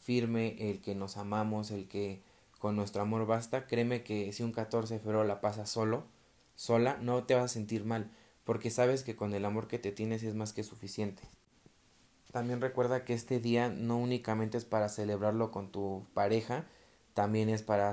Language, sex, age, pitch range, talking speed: Spanish, male, 30-49, 105-115 Hz, 190 wpm